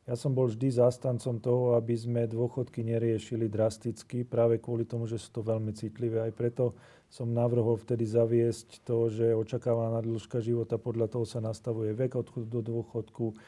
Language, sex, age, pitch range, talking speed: Slovak, male, 40-59, 115-130 Hz, 170 wpm